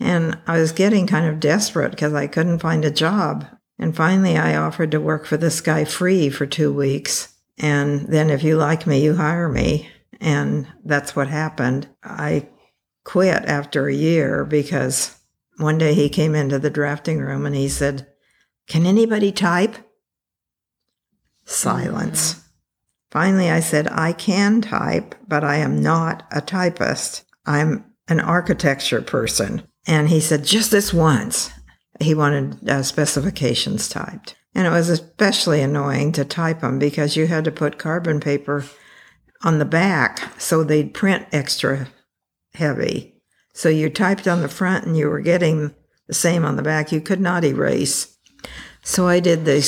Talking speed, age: 160 wpm, 60-79